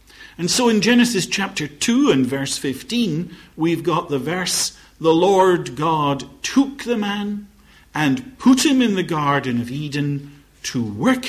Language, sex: English, male